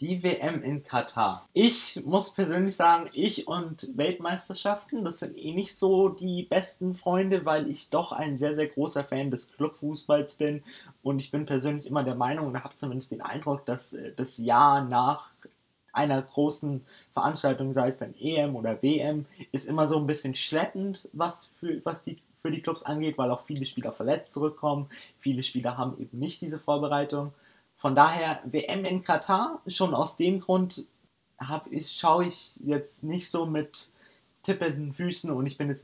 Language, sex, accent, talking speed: German, male, German, 175 wpm